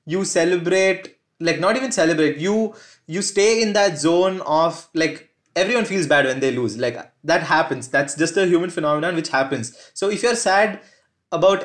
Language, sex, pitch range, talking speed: Hindi, male, 155-200 Hz, 180 wpm